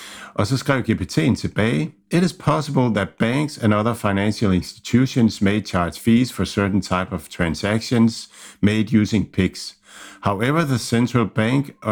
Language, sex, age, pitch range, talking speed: Danish, male, 50-69, 100-120 Hz, 120 wpm